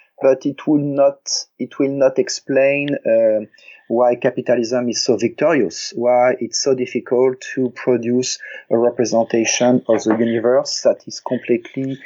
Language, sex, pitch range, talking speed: English, male, 115-135 Hz, 140 wpm